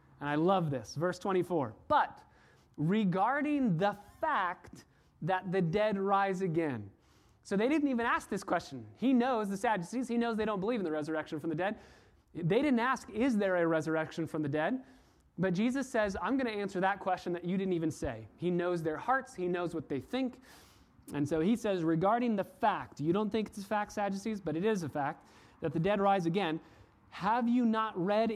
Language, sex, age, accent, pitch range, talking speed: English, male, 30-49, American, 150-210 Hz, 205 wpm